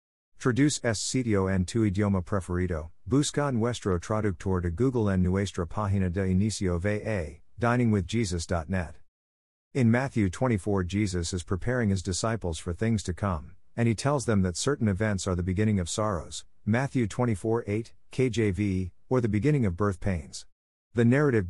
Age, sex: 50-69, male